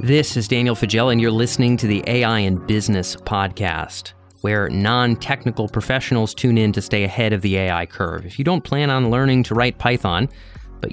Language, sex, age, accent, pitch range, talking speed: English, male, 30-49, American, 95-125 Hz, 190 wpm